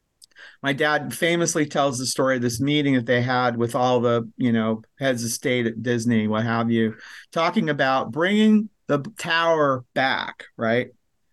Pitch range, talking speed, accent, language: 130-175 Hz, 170 wpm, American, English